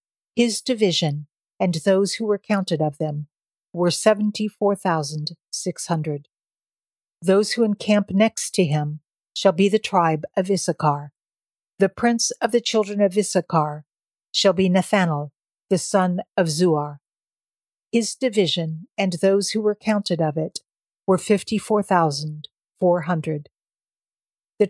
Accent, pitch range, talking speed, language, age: American, 160-210 Hz, 135 wpm, English, 50-69